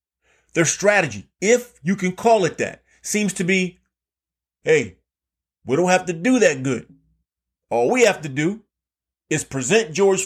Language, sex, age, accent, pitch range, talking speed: English, male, 30-49, American, 135-190 Hz, 160 wpm